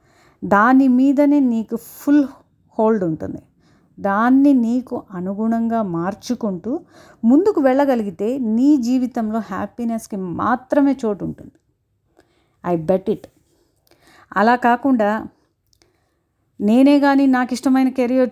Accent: native